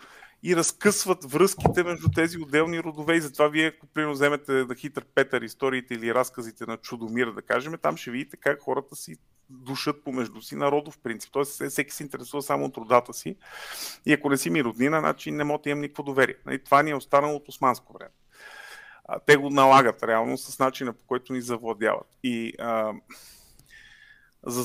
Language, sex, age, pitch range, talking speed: Bulgarian, male, 30-49, 125-145 Hz, 180 wpm